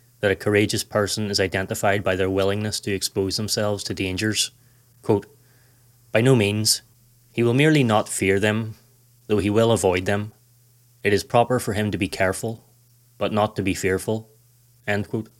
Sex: male